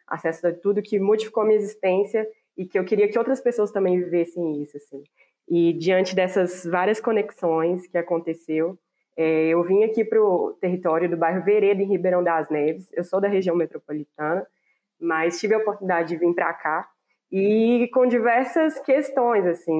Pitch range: 170-205 Hz